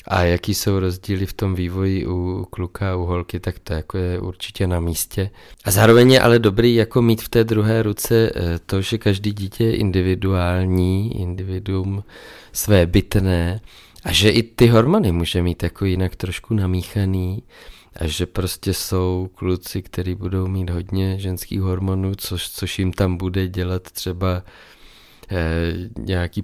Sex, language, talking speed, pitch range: male, Czech, 150 wpm, 90-105 Hz